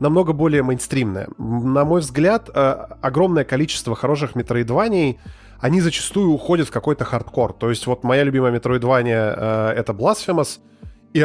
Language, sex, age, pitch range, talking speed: Russian, male, 20-39, 110-140 Hz, 135 wpm